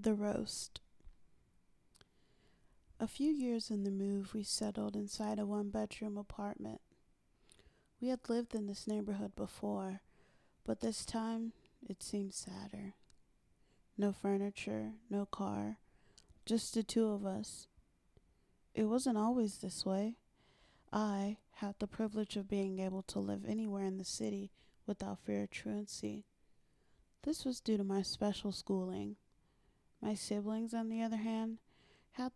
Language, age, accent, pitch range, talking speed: English, 30-49, American, 185-225 Hz, 135 wpm